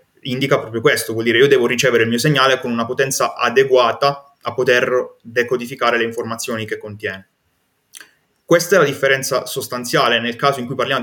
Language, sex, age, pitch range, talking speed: Italian, male, 20-39, 115-135 Hz, 175 wpm